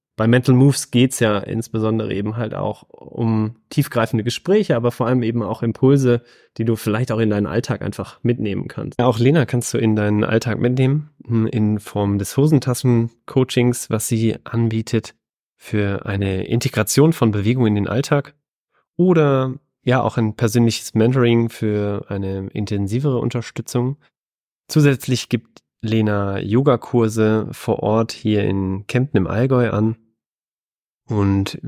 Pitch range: 105-125 Hz